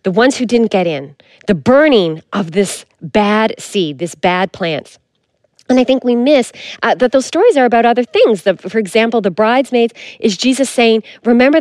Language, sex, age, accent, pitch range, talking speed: English, female, 40-59, American, 195-255 Hz, 190 wpm